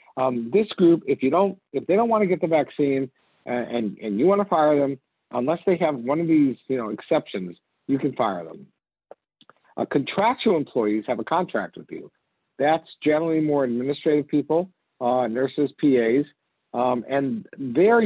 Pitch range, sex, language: 125-170 Hz, male, English